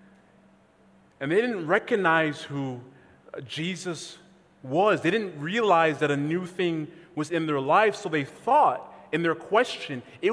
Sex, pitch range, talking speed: male, 175-265 Hz, 145 wpm